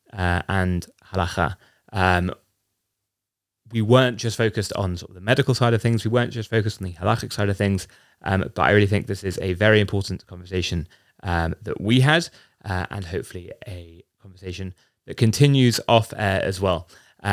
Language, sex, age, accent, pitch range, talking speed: English, male, 20-39, British, 95-115 Hz, 185 wpm